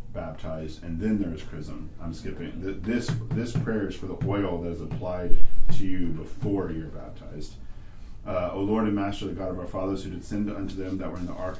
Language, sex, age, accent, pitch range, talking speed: English, male, 30-49, American, 90-105 Hz, 220 wpm